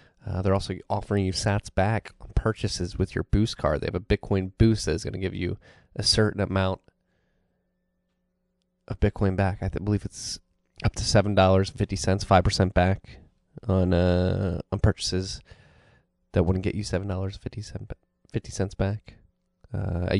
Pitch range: 90-110 Hz